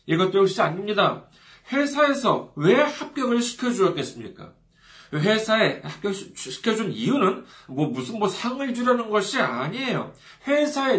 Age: 40-59